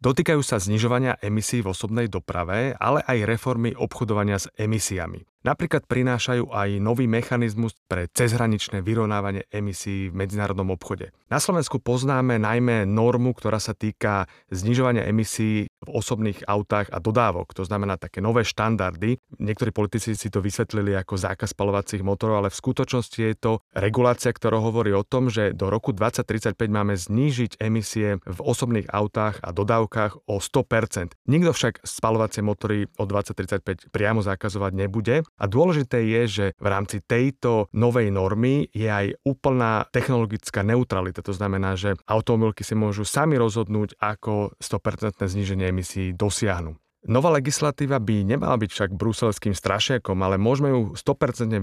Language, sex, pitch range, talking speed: Slovak, male, 100-120 Hz, 145 wpm